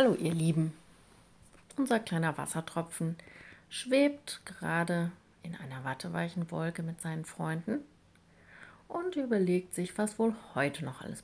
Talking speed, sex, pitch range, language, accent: 125 wpm, female, 155-205 Hz, German, German